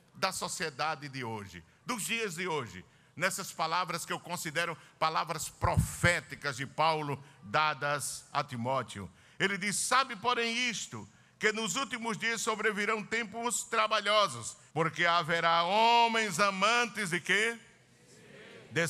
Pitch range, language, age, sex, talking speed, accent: 155-215 Hz, Portuguese, 60-79, male, 125 wpm, Brazilian